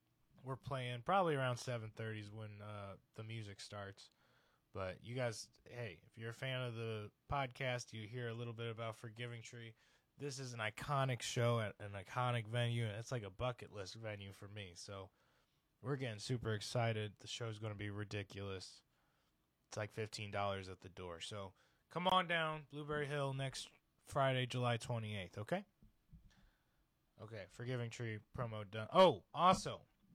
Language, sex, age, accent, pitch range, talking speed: English, male, 20-39, American, 110-135 Hz, 165 wpm